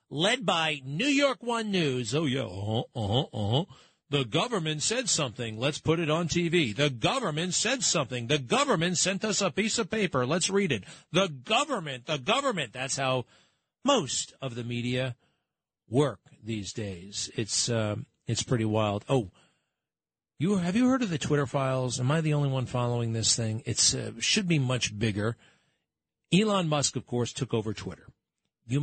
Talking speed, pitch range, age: 175 wpm, 115-160 Hz, 40-59